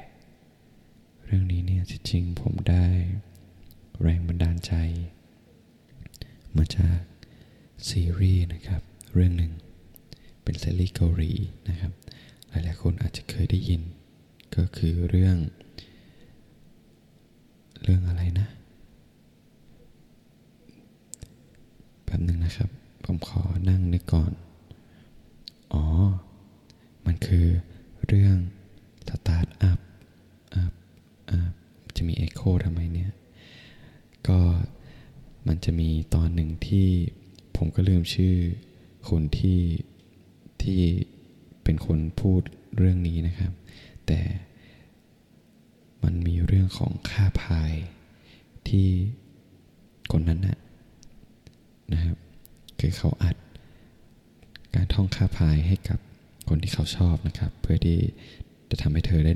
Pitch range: 85-95 Hz